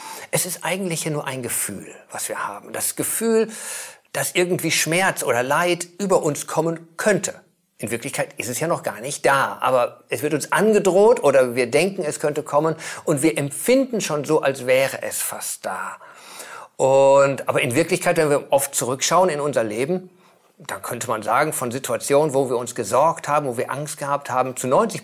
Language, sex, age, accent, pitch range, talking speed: German, male, 50-69, German, 135-180 Hz, 190 wpm